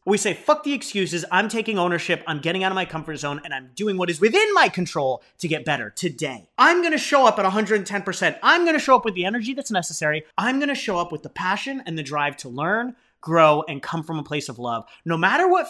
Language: English